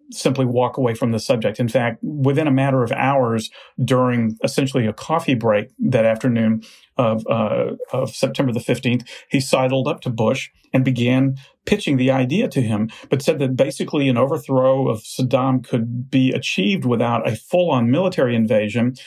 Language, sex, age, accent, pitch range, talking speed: English, male, 40-59, American, 120-135 Hz, 165 wpm